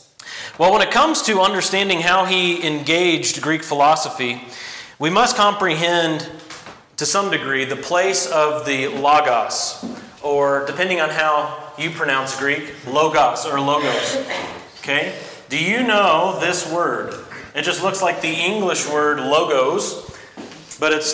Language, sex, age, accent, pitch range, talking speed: English, male, 30-49, American, 150-190 Hz, 135 wpm